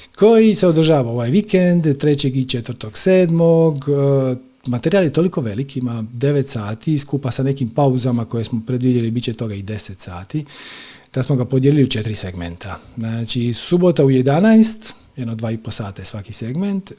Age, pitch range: 40-59, 120-165 Hz